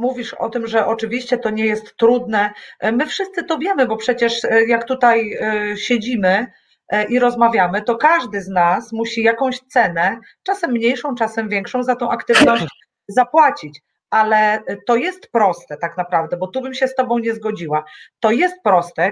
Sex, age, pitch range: female, 40-59, 205-250 Hz